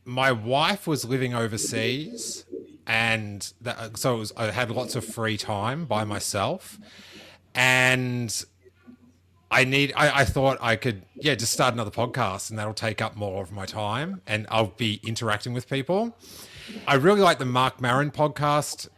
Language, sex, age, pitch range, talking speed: English, male, 30-49, 110-140 Hz, 160 wpm